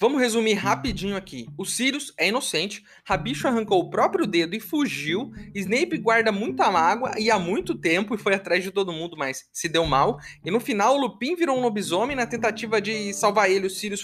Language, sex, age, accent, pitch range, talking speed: Portuguese, male, 20-39, Brazilian, 185-245 Hz, 205 wpm